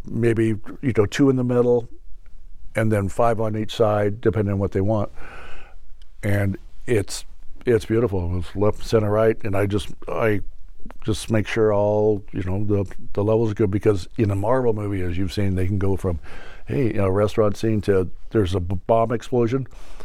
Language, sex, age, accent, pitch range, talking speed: English, male, 60-79, American, 95-115 Hz, 190 wpm